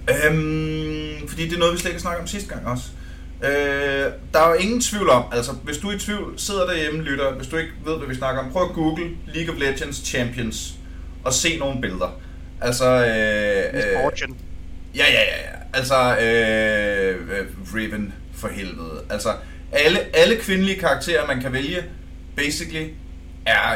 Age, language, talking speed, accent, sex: 30-49, Danish, 180 wpm, native, male